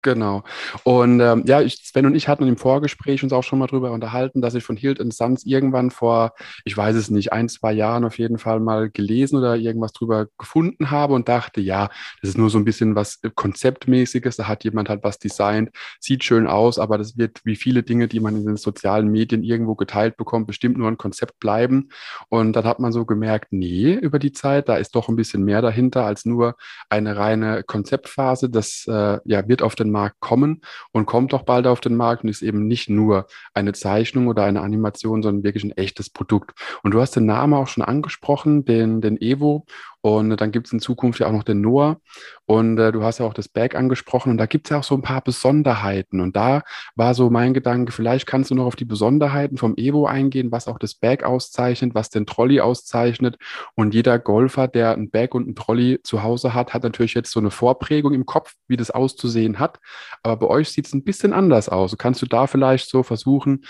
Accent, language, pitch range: German, German, 110-130 Hz